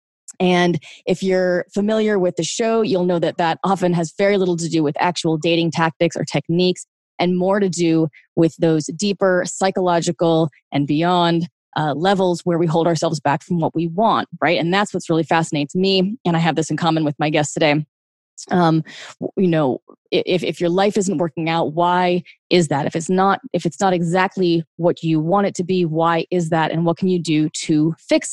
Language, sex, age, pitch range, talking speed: English, female, 20-39, 165-185 Hz, 205 wpm